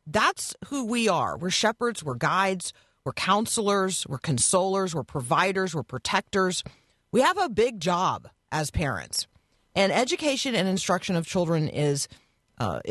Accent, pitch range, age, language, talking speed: American, 150-215 Hz, 40-59, English, 145 wpm